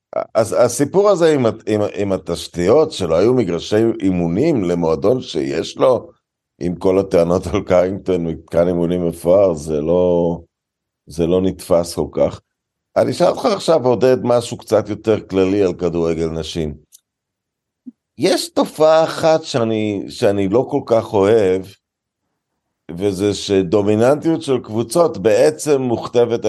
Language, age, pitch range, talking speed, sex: Hebrew, 50-69, 90-120 Hz, 125 wpm, male